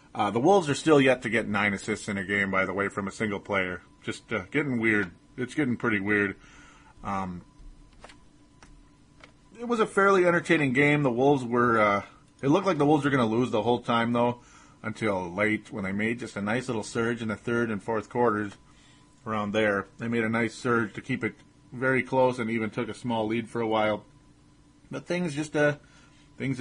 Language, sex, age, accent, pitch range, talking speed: English, male, 30-49, American, 105-130 Hz, 210 wpm